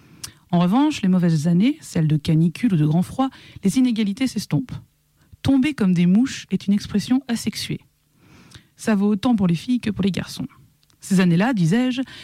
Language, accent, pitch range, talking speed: French, French, 160-220 Hz, 175 wpm